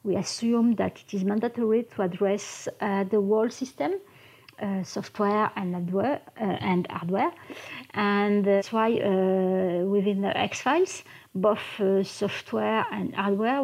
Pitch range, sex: 195-230 Hz, female